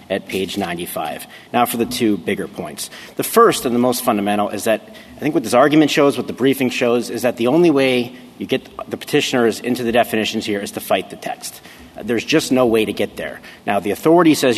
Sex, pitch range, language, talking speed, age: male, 110-130 Hz, English, 230 wpm, 40-59